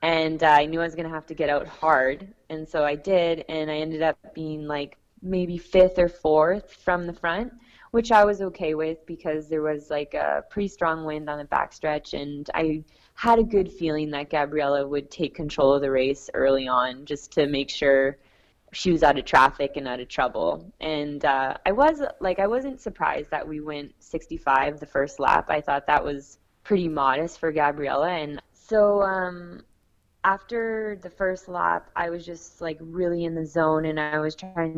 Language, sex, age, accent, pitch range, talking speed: English, female, 20-39, American, 150-175 Hz, 200 wpm